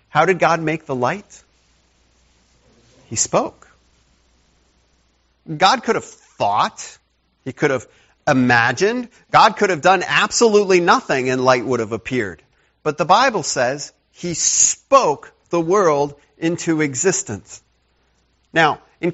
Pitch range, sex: 120-170 Hz, male